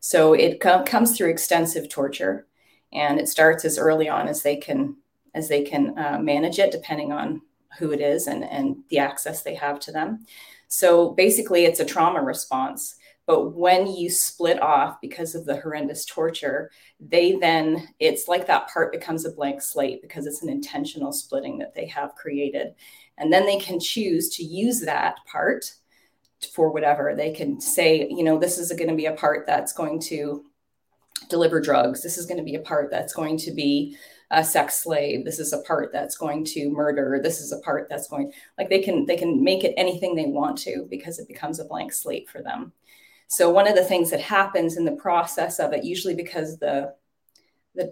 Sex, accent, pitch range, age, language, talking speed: female, American, 150-195 Hz, 30-49, English, 200 wpm